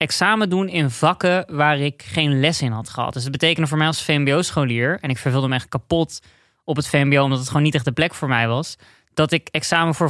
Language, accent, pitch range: Dutch, Dutch, 135-165 Hz